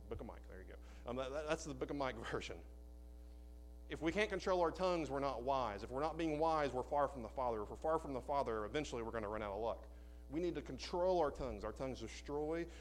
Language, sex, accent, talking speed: English, male, American, 260 wpm